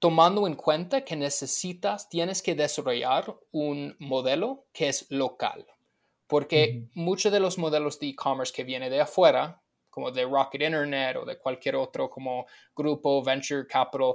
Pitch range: 135-170 Hz